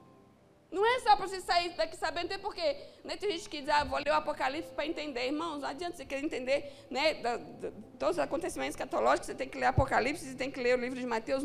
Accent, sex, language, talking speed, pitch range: Brazilian, female, Portuguese, 255 wpm, 280-375 Hz